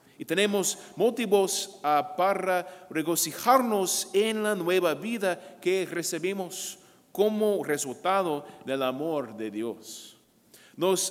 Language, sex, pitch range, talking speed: English, male, 145-190 Hz, 95 wpm